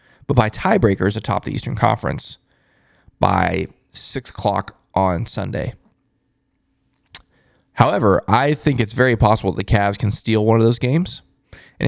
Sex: male